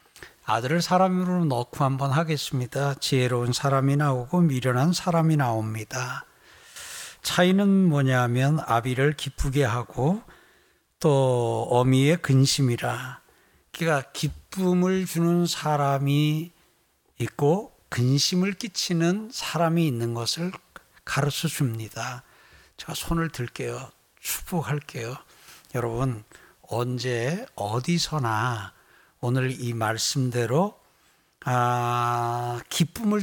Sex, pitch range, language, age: male, 130-180 Hz, Korean, 60-79